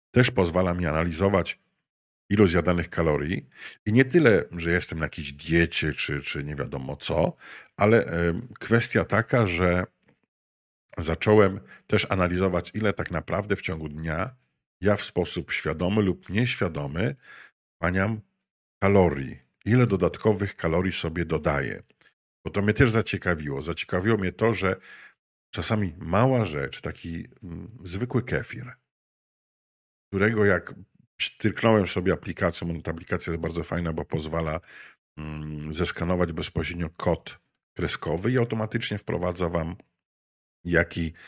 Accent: native